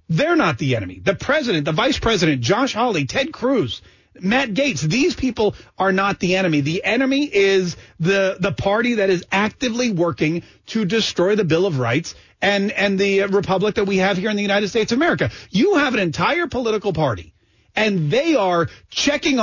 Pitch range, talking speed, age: 165-240 Hz, 190 wpm, 40-59